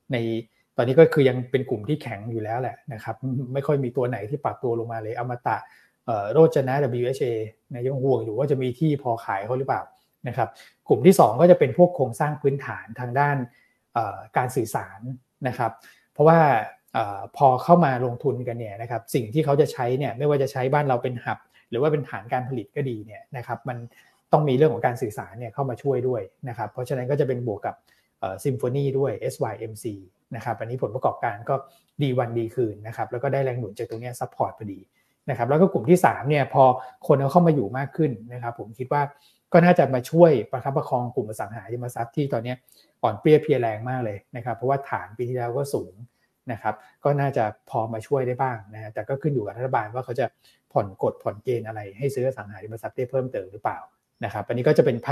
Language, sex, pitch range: Thai, male, 115-140 Hz